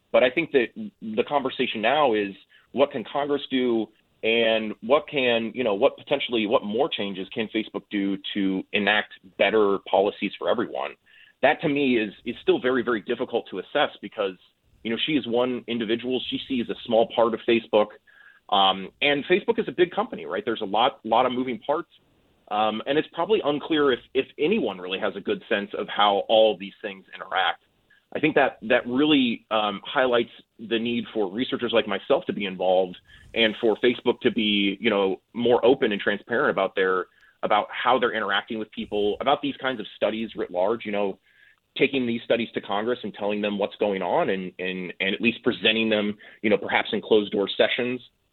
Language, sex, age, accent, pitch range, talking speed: English, male, 30-49, American, 105-130 Hz, 200 wpm